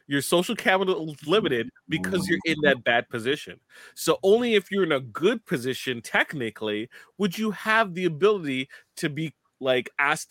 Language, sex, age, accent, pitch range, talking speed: English, male, 30-49, American, 130-190 Hz, 170 wpm